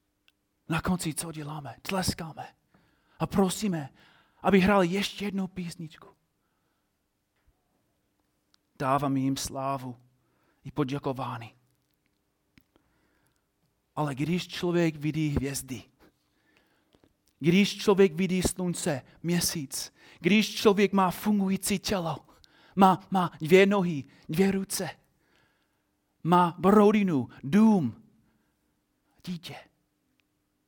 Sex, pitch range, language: male, 115-165 Hz, Czech